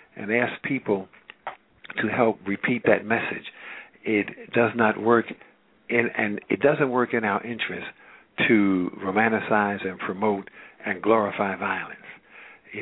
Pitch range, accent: 100-115 Hz, American